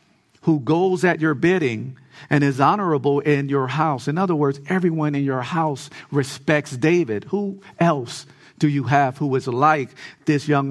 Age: 50-69